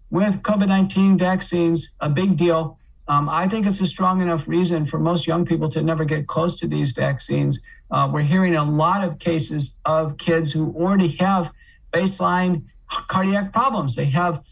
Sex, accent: male, American